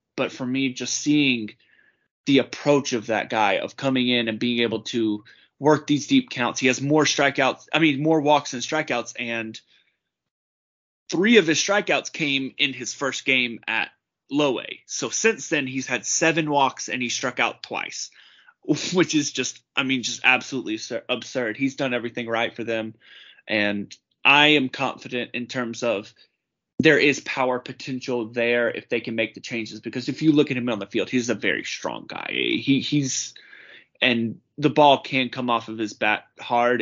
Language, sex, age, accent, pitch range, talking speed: English, male, 20-39, American, 115-140 Hz, 185 wpm